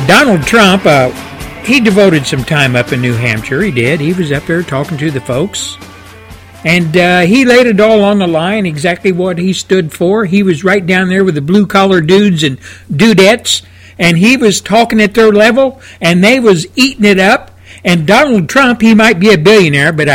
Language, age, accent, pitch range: English, 60-79, American, 165-220 Hz